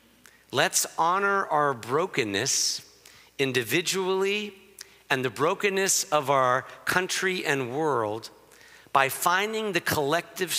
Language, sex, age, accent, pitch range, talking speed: English, male, 50-69, American, 135-195 Hz, 95 wpm